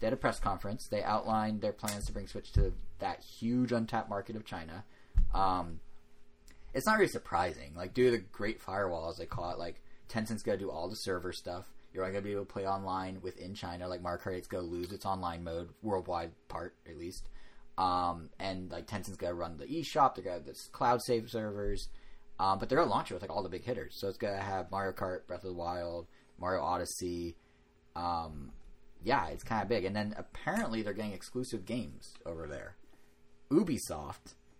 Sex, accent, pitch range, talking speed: male, American, 90-110 Hz, 220 wpm